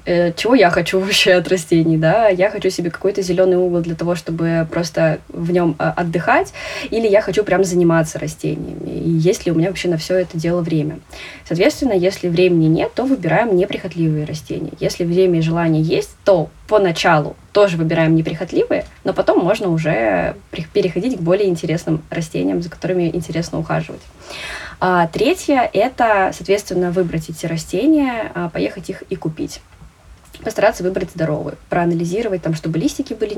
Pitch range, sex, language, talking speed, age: 165-200 Hz, female, Russian, 160 wpm, 20-39